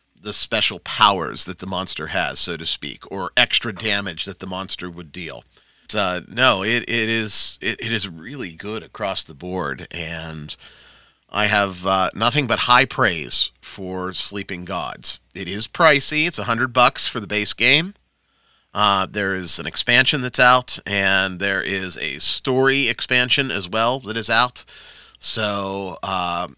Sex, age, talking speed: male, 30-49, 165 wpm